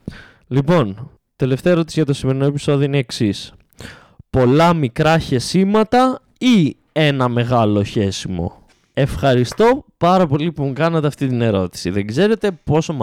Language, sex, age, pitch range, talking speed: Greek, male, 20-39, 115-180 Hz, 135 wpm